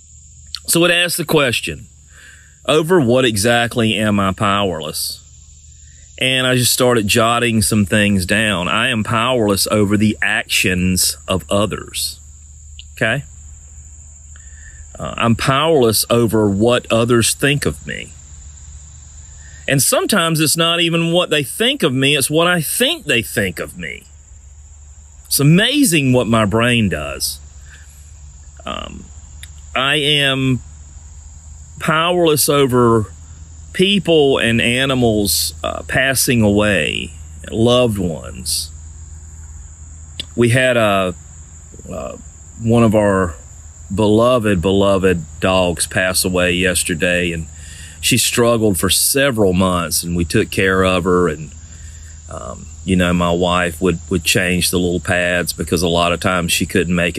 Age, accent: 40-59, American